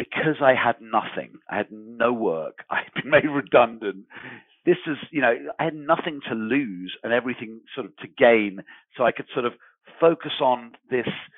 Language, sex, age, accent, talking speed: English, male, 50-69, British, 190 wpm